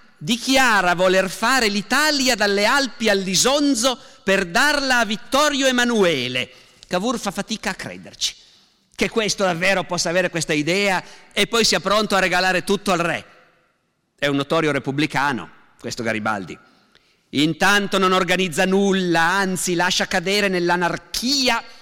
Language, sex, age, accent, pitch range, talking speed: Italian, male, 50-69, native, 145-200 Hz, 130 wpm